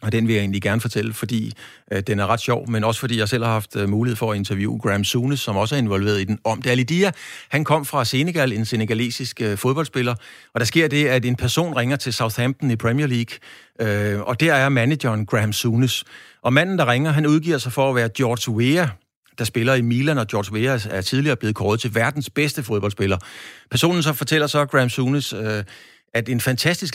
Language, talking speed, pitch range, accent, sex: Danish, 225 wpm, 110-135 Hz, native, male